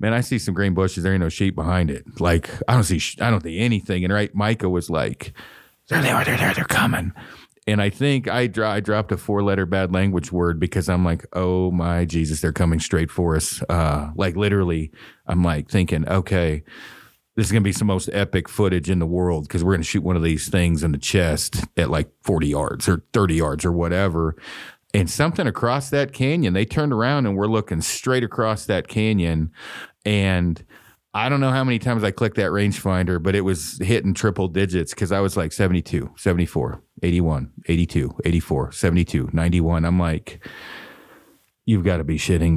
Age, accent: 40-59, American